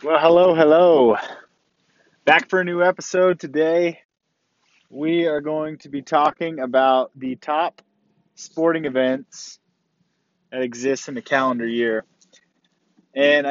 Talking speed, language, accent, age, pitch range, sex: 120 wpm, English, American, 20-39, 135-175 Hz, male